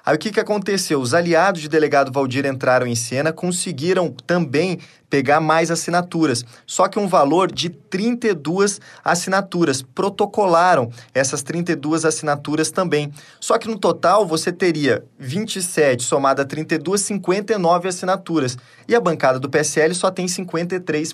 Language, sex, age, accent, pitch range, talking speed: Portuguese, male, 20-39, Brazilian, 135-180 Hz, 140 wpm